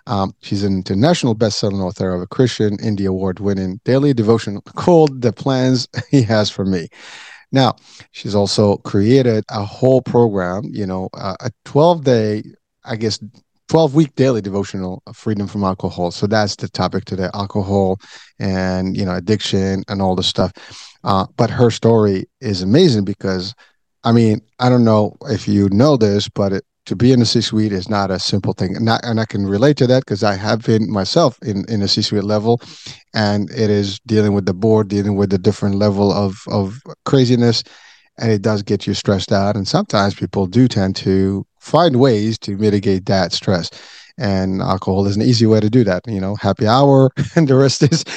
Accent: American